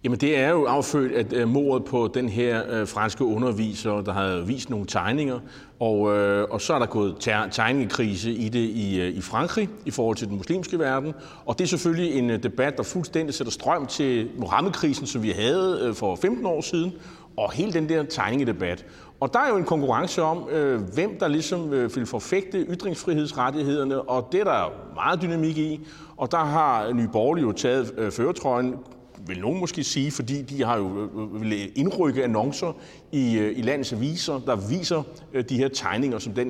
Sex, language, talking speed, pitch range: male, Danish, 175 wpm, 110-155 Hz